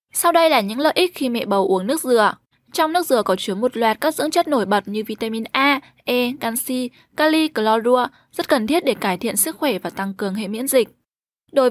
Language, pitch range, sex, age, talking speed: Vietnamese, 220-285 Hz, female, 10-29, 235 wpm